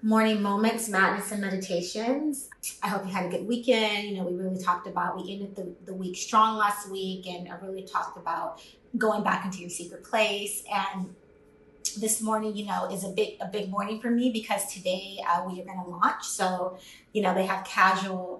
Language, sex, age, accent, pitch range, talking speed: English, female, 30-49, American, 185-215 Hz, 210 wpm